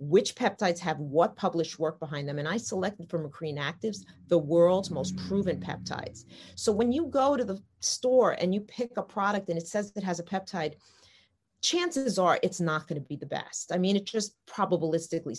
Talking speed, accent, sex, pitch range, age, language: 205 wpm, American, female, 155-200 Hz, 40-59, English